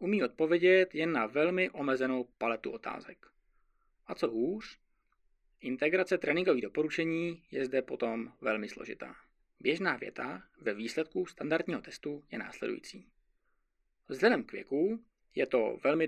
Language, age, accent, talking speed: Czech, 20-39, native, 125 wpm